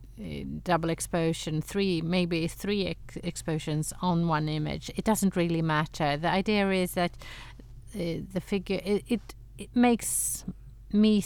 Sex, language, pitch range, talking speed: female, English, 130-190 Hz, 140 wpm